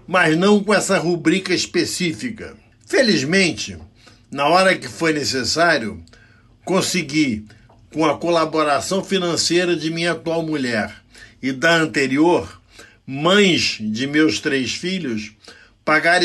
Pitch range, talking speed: 135-175 Hz, 110 wpm